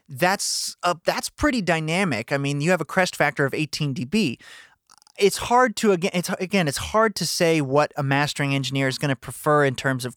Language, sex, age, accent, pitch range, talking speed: English, male, 30-49, American, 130-165 Hz, 210 wpm